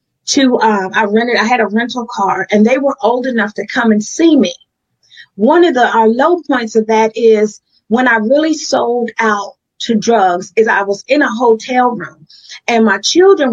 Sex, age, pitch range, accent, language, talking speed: female, 30-49, 205-245 Hz, American, English, 200 wpm